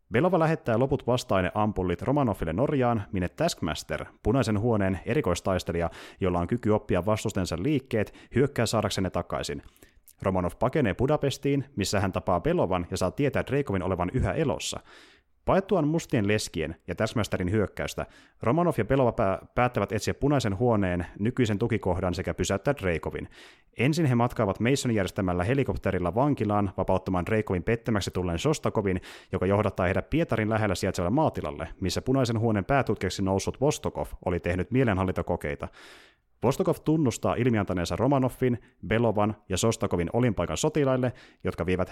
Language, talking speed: Finnish, 130 wpm